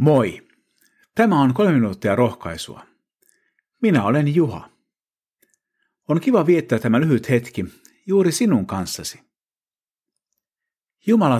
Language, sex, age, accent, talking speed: Finnish, male, 50-69, native, 100 wpm